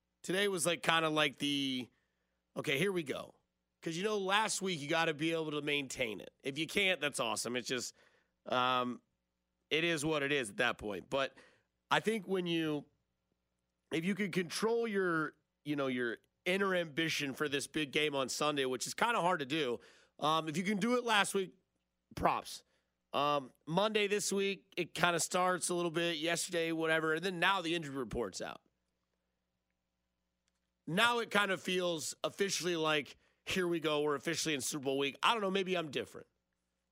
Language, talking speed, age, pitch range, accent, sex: English, 195 wpm, 30-49, 130-170 Hz, American, male